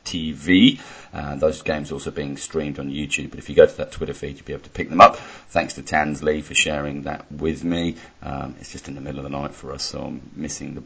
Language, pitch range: English, 70-80 Hz